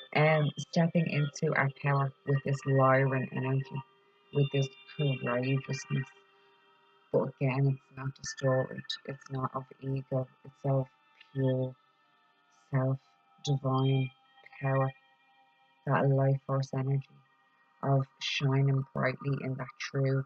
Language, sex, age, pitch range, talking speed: English, female, 30-49, 135-160 Hz, 115 wpm